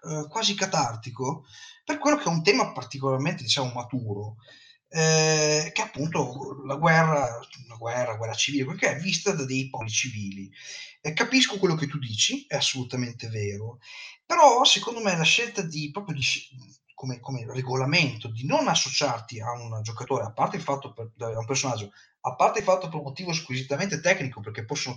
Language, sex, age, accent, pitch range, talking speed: Italian, male, 30-49, native, 125-185 Hz, 180 wpm